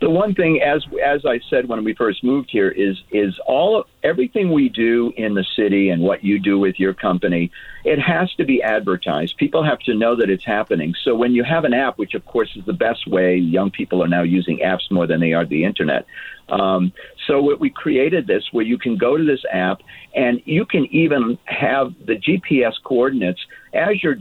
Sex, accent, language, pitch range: male, American, English, 95-130 Hz